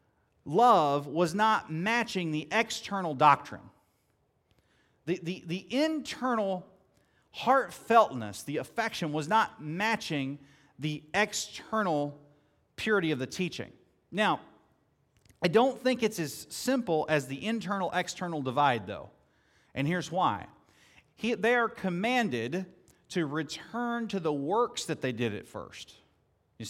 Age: 40-59